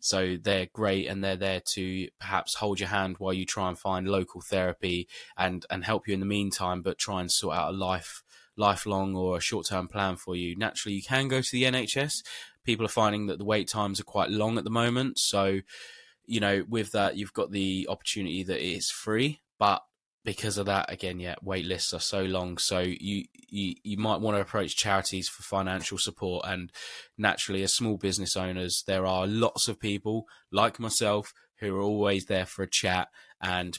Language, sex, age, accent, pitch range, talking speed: English, male, 10-29, British, 90-105 Hz, 210 wpm